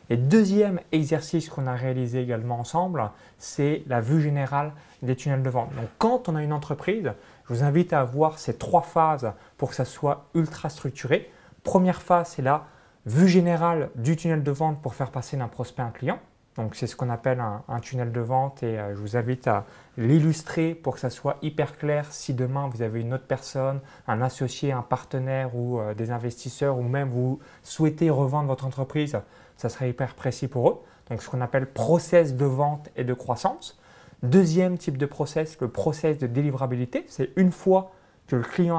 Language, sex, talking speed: French, male, 195 wpm